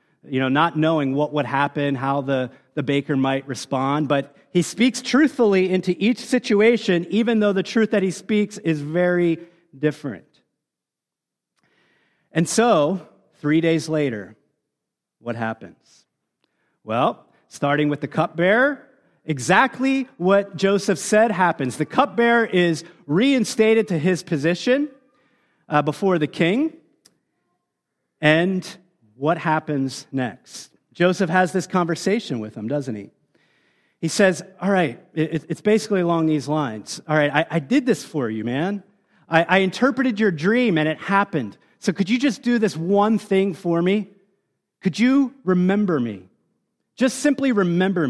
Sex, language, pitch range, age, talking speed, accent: male, English, 150-210 Hz, 40-59, 140 wpm, American